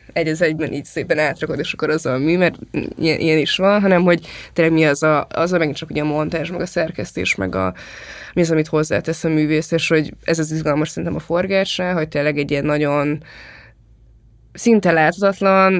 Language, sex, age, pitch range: Hungarian, female, 20-39, 150-165 Hz